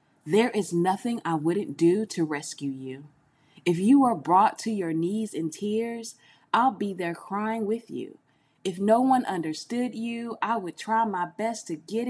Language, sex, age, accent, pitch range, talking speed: English, female, 20-39, American, 170-235 Hz, 180 wpm